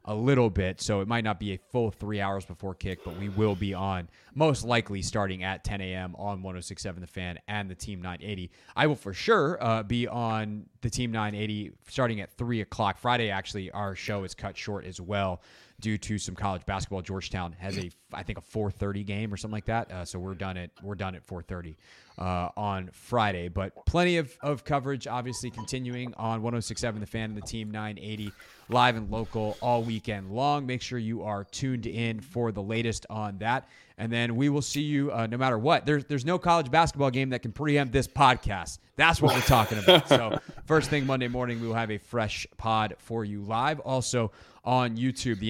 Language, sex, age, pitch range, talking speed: English, male, 30-49, 95-120 Hz, 210 wpm